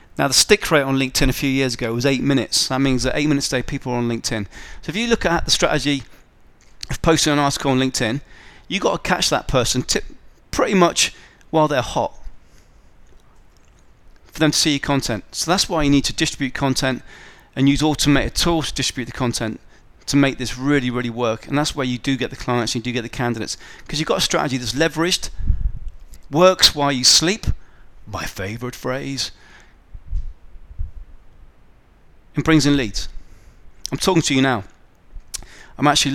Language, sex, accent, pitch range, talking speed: English, male, British, 110-155 Hz, 190 wpm